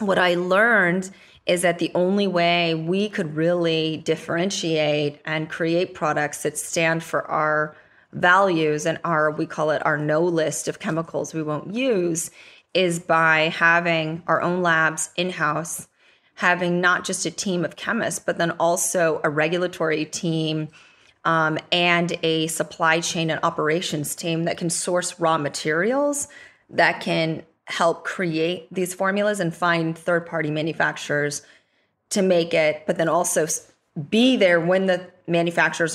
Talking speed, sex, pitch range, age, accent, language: 145 wpm, female, 160-180 Hz, 20-39, American, English